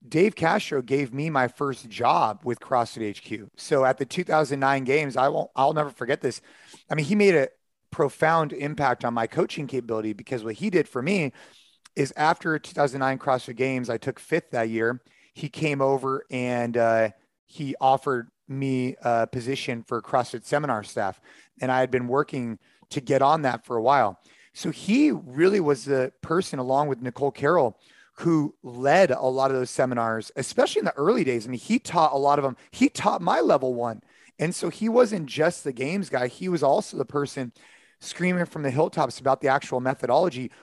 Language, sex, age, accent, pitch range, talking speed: English, male, 30-49, American, 125-160 Hz, 190 wpm